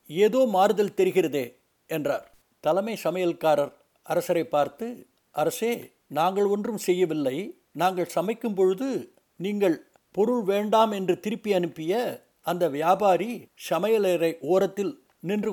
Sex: male